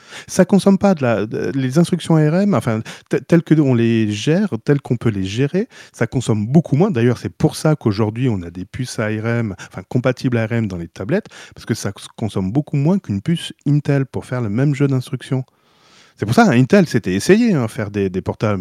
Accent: French